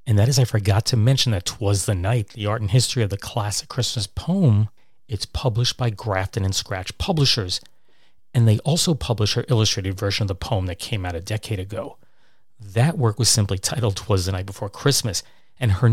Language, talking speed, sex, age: English, 205 wpm, male, 40-59